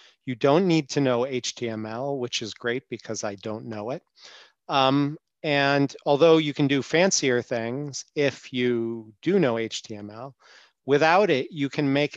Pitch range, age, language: 120-140 Hz, 40-59, English